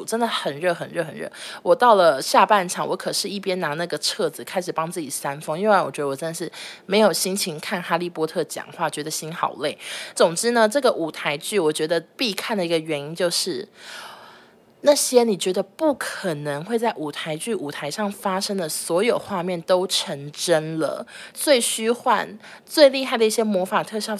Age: 20-39